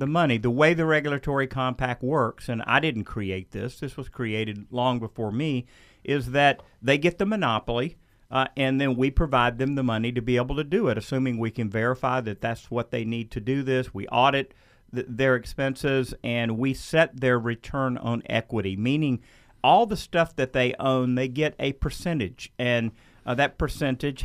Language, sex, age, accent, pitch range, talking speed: English, male, 50-69, American, 120-145 Hz, 190 wpm